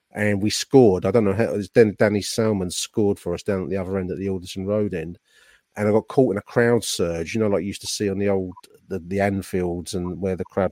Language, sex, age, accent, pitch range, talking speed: English, male, 40-59, British, 95-115 Hz, 265 wpm